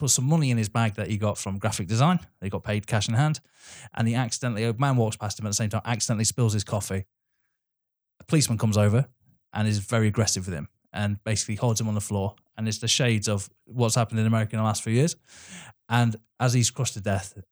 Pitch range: 110-135 Hz